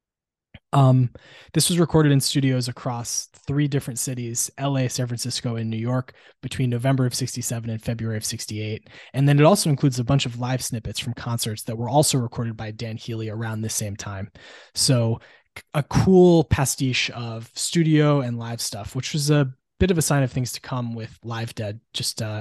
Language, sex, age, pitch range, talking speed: English, male, 20-39, 115-140 Hz, 195 wpm